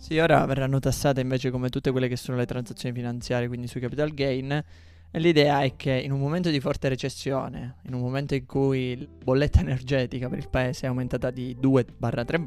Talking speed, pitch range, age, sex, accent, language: 200 wpm, 115-130 Hz, 20-39, male, native, Italian